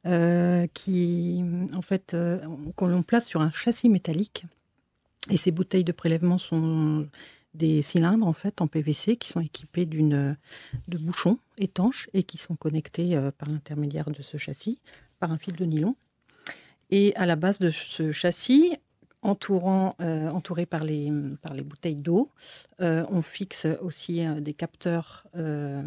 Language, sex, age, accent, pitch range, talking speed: French, female, 50-69, French, 155-185 Hz, 160 wpm